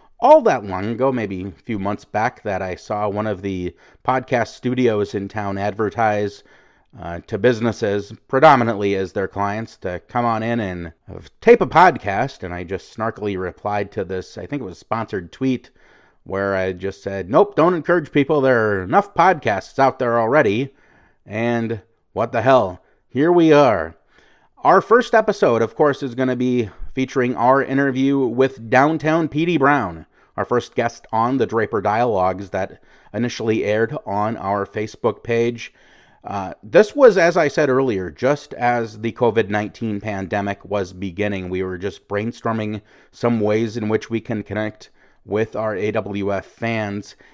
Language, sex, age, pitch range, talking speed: English, male, 30-49, 100-130 Hz, 165 wpm